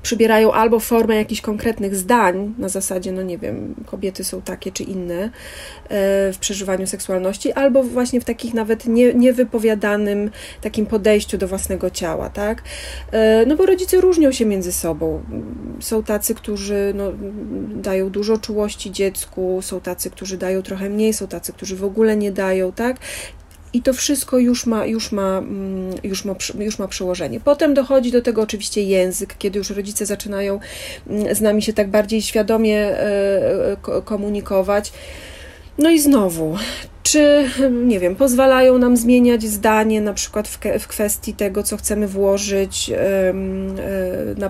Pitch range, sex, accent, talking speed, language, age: 195-235 Hz, female, native, 145 wpm, Polish, 30-49